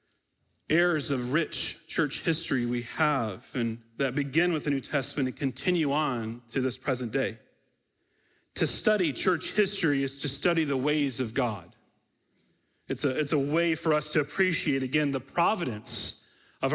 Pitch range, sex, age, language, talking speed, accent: 130-160 Hz, male, 40-59, English, 160 wpm, American